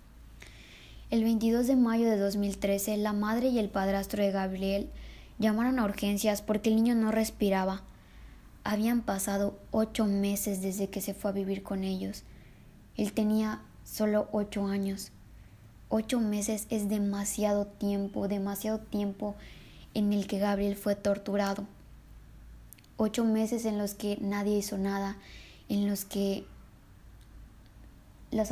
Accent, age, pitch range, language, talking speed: Mexican, 20-39, 200-220 Hz, Spanish, 135 wpm